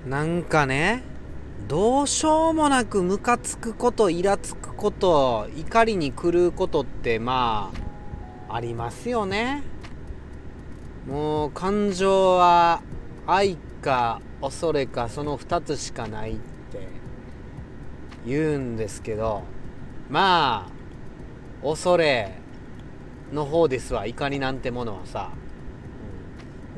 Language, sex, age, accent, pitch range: Japanese, male, 40-59, native, 125-195 Hz